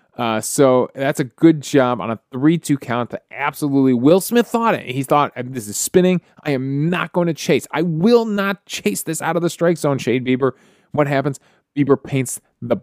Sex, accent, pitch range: male, American, 135-185 Hz